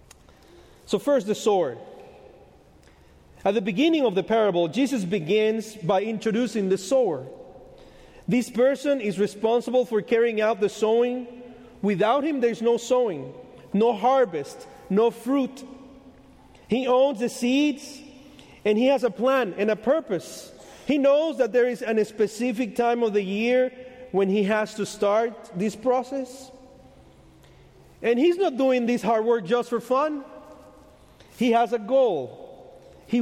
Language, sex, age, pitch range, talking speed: English, male, 40-59, 215-260 Hz, 145 wpm